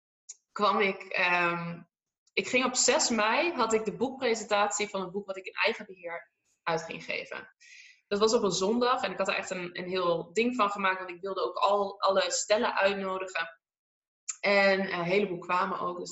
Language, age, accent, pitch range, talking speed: Dutch, 20-39, Dutch, 190-230 Hz, 200 wpm